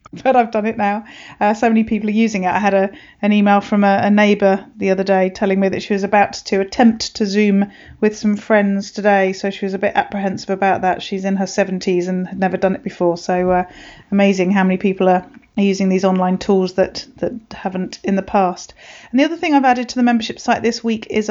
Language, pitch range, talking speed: English, 190-210 Hz, 245 wpm